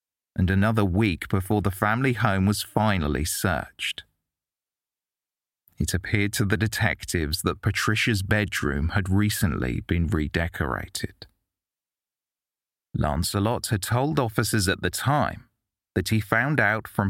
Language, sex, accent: English, male, British